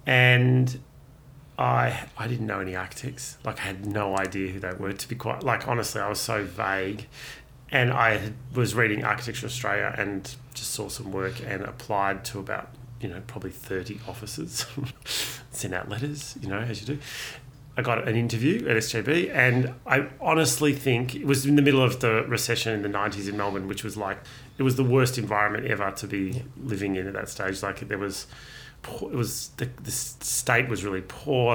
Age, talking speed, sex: 30-49, 195 wpm, male